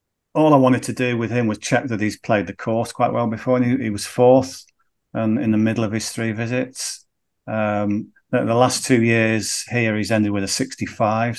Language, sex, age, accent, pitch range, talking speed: English, male, 40-59, British, 105-140 Hz, 215 wpm